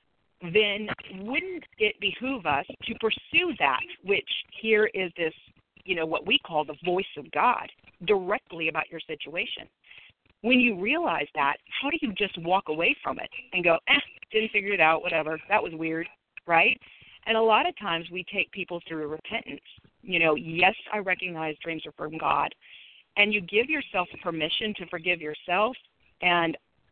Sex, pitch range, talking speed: female, 165-220 Hz, 170 wpm